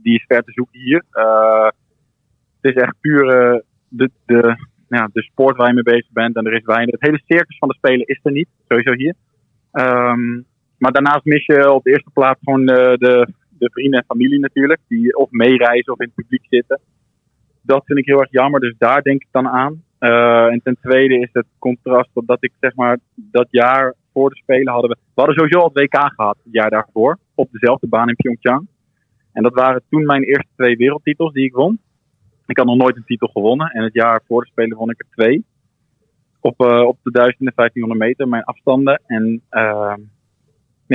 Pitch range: 120-140 Hz